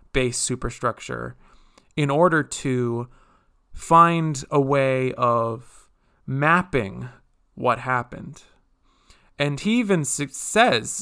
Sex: male